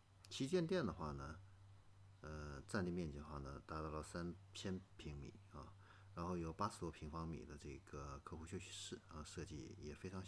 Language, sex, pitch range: Chinese, male, 80-100 Hz